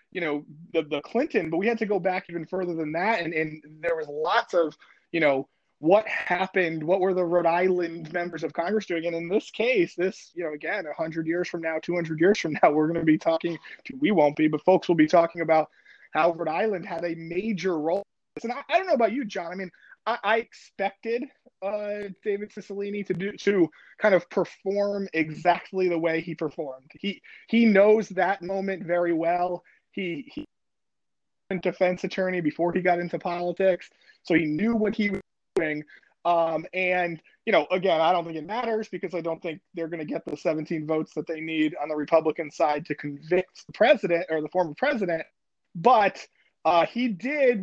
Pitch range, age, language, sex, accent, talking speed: 165-205 Hz, 20-39, English, male, American, 205 wpm